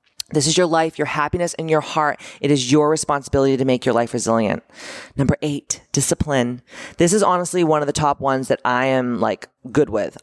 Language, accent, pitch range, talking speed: English, American, 130-160 Hz, 205 wpm